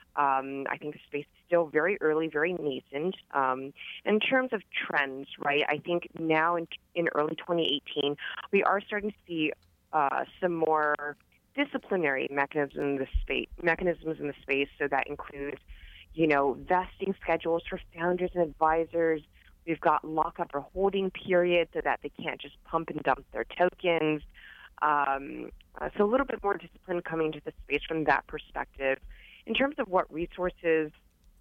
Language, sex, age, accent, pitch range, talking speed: English, female, 30-49, American, 145-180 Hz, 165 wpm